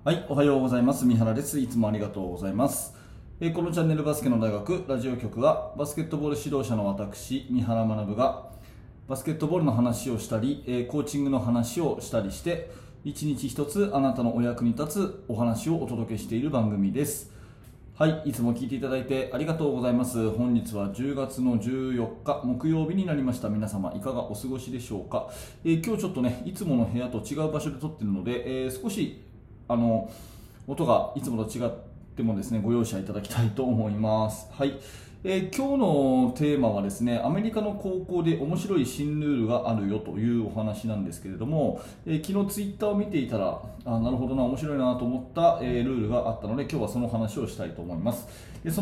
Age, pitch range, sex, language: 20-39, 115-150 Hz, male, Japanese